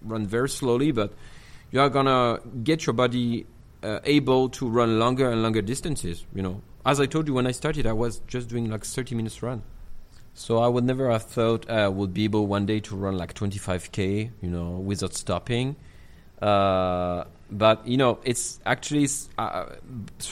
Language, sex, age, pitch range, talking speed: English, male, 30-49, 105-125 Hz, 190 wpm